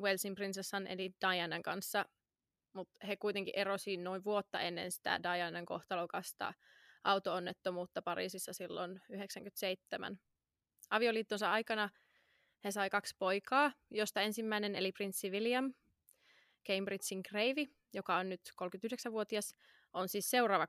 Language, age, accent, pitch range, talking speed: Finnish, 20-39, native, 190-220 Hz, 115 wpm